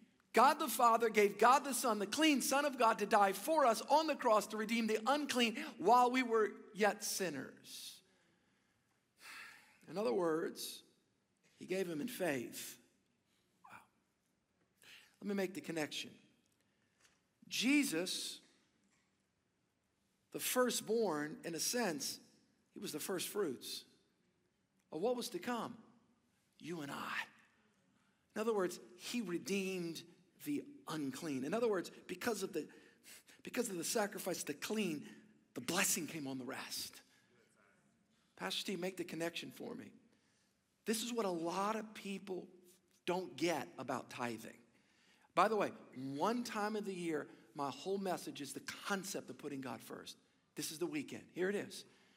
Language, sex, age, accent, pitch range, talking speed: English, male, 50-69, American, 170-240 Hz, 150 wpm